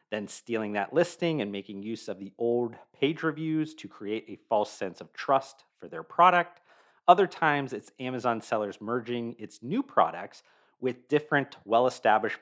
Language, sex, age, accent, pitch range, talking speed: English, male, 40-59, American, 110-155 Hz, 165 wpm